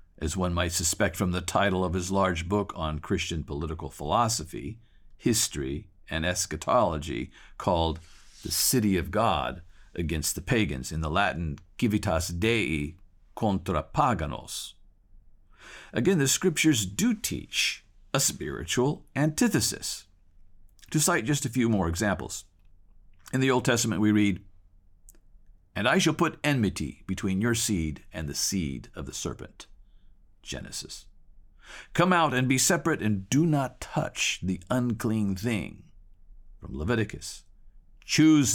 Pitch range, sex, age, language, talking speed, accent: 85-115 Hz, male, 50-69, English, 130 wpm, American